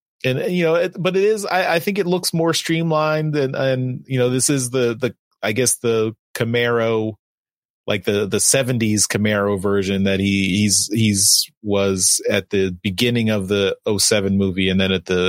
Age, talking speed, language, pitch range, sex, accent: 30-49, 190 wpm, English, 100-130 Hz, male, American